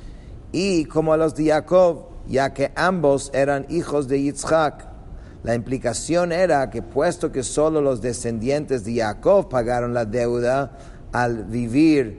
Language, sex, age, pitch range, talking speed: English, male, 50-69, 120-155 Hz, 145 wpm